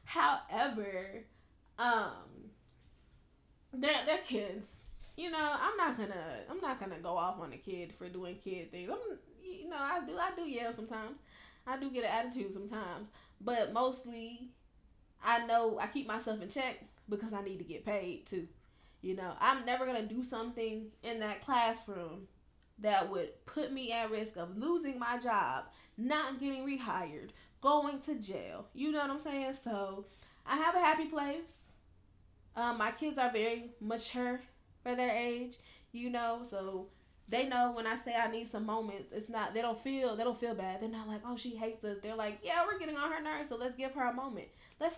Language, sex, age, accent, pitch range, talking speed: English, female, 10-29, American, 215-275 Hz, 190 wpm